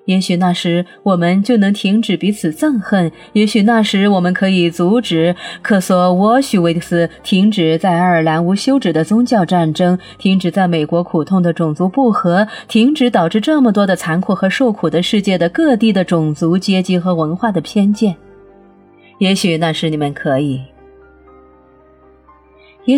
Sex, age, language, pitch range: female, 30-49, Chinese, 175-230 Hz